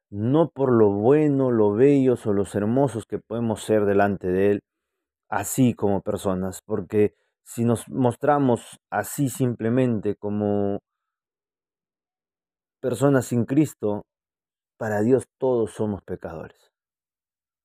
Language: Spanish